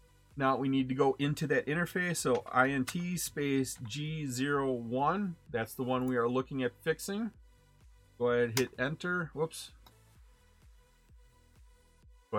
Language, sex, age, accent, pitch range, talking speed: English, male, 40-59, American, 125-160 Hz, 130 wpm